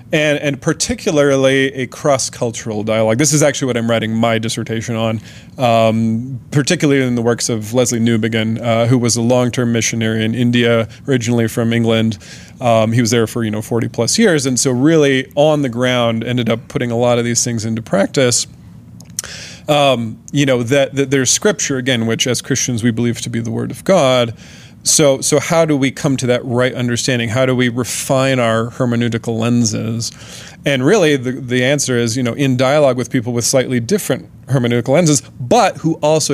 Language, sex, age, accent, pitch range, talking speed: English, male, 30-49, American, 115-140 Hz, 190 wpm